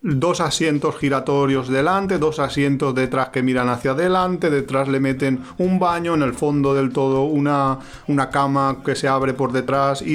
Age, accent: 40-59, Spanish